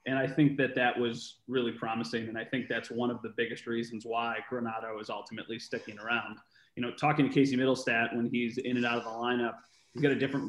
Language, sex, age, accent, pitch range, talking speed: English, male, 30-49, American, 120-135 Hz, 235 wpm